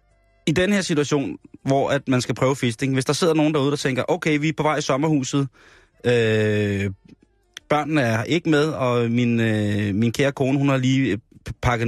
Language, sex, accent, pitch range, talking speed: Danish, male, native, 110-145 Hz, 195 wpm